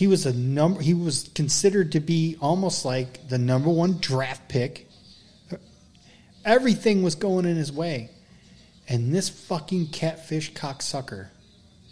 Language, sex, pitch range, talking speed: English, male, 130-175 Hz, 135 wpm